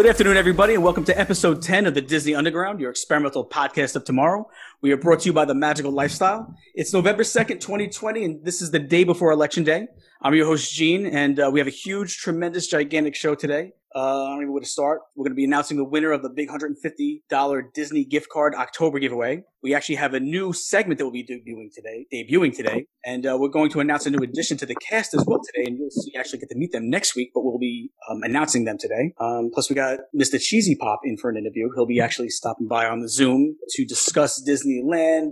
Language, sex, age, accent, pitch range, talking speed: English, male, 30-49, American, 130-160 Hz, 250 wpm